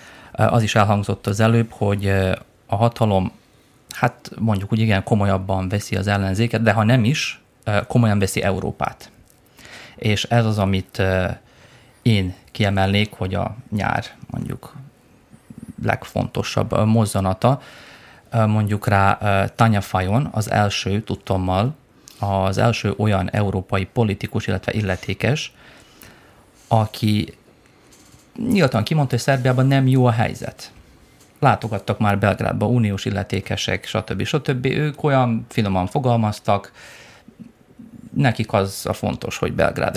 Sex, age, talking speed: male, 30-49, 115 wpm